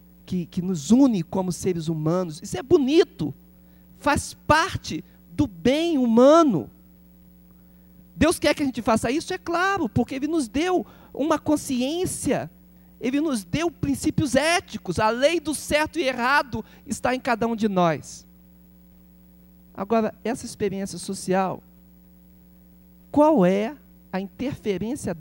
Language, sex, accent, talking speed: Portuguese, male, Brazilian, 130 wpm